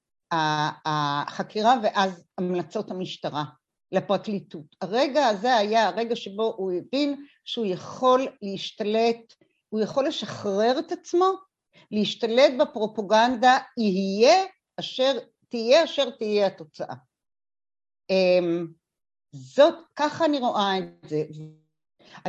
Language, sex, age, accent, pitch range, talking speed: Hebrew, female, 50-69, native, 185-280 Hz, 90 wpm